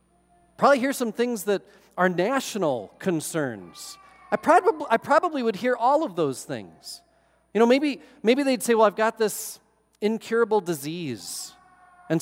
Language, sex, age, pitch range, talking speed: English, male, 40-59, 155-230 Hz, 150 wpm